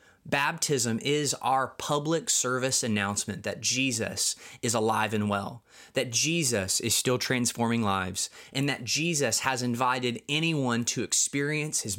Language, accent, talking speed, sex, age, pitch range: English, American, 135 wpm, male, 20-39, 105-130 Hz